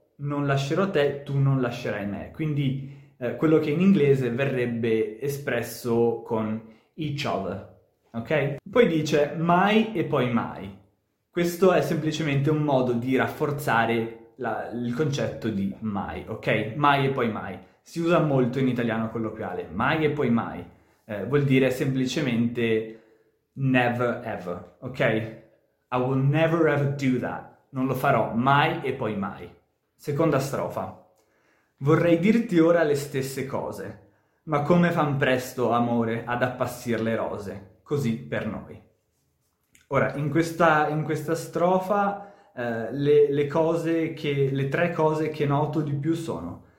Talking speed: 140 wpm